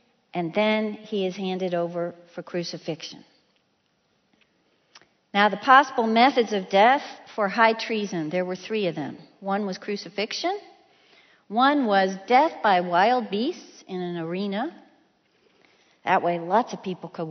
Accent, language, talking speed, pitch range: American, English, 140 wpm, 185-250 Hz